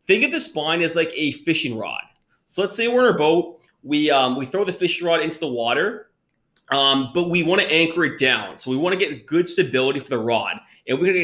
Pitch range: 125-170 Hz